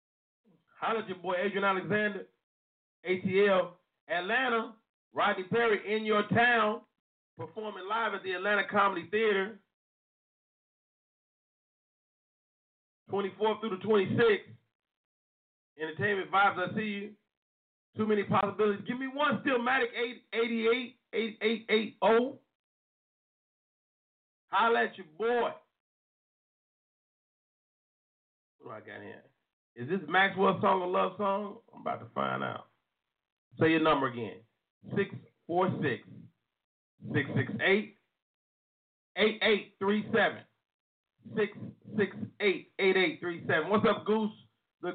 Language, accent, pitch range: English, American, 190-220 Hz